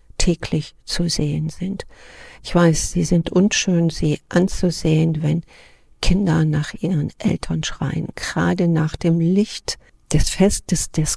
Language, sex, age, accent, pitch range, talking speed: German, female, 50-69, German, 150-170 Hz, 130 wpm